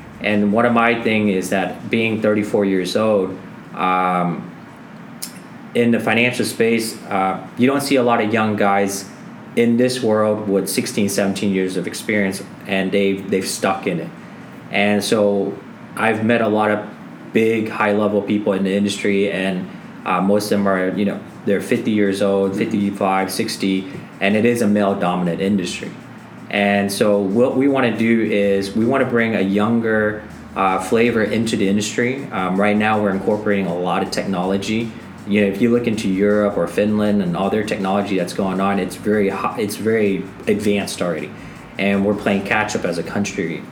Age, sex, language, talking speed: 20-39, male, English, 185 wpm